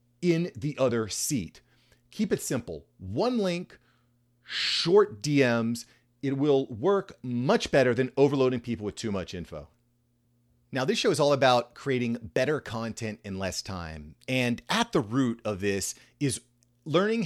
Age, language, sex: 40-59, English, male